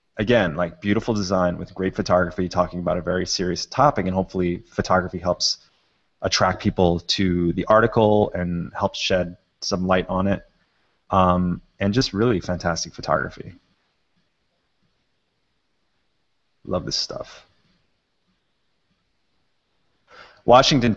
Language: English